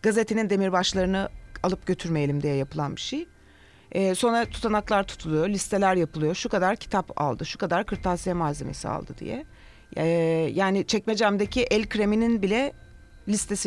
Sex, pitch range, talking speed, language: female, 175-220 Hz, 135 wpm, Turkish